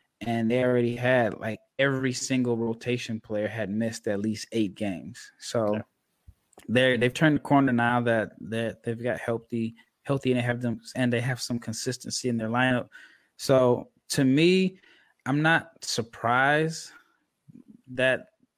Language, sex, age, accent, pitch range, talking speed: English, male, 20-39, American, 115-130 Hz, 155 wpm